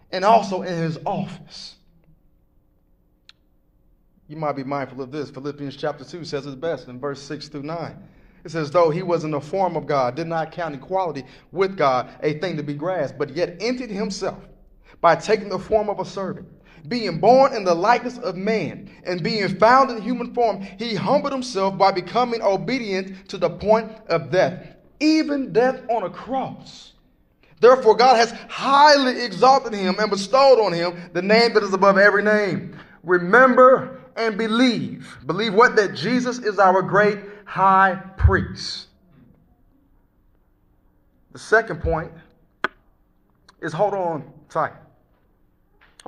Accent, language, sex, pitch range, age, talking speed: American, English, male, 165-220 Hz, 30-49, 155 wpm